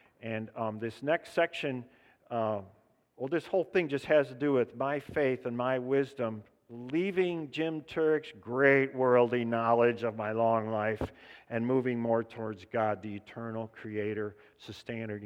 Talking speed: 155 wpm